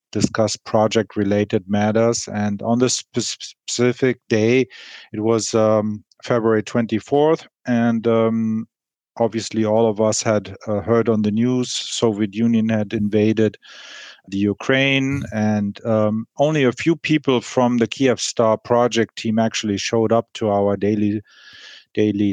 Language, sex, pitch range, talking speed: English, male, 105-115 Hz, 135 wpm